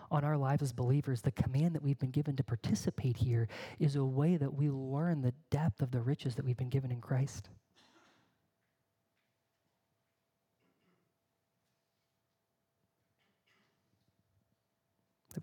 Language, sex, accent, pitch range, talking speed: English, male, American, 125-165 Hz, 125 wpm